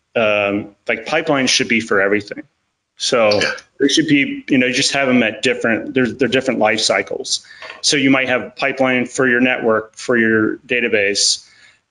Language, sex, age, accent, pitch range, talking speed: English, male, 30-49, American, 110-135 Hz, 170 wpm